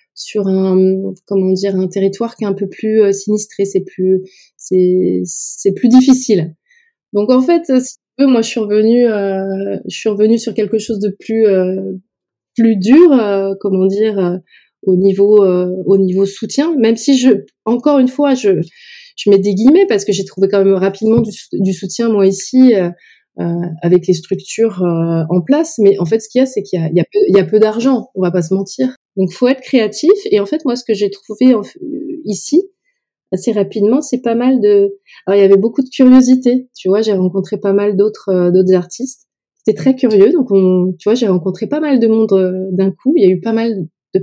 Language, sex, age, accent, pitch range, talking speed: French, female, 20-39, French, 190-250 Hz, 225 wpm